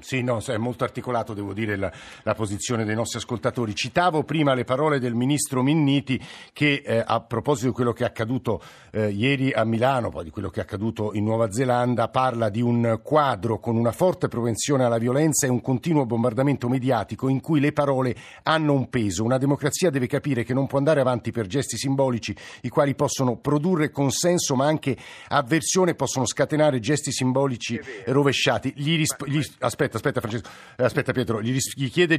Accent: native